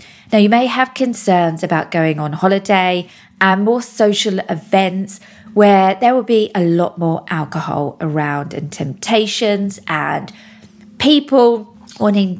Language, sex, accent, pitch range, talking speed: English, female, British, 180-225 Hz, 130 wpm